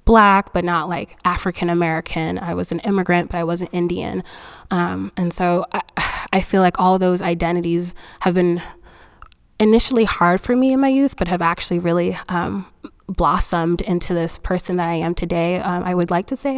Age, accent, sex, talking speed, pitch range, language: 20-39, American, female, 190 wpm, 175-195 Hz, English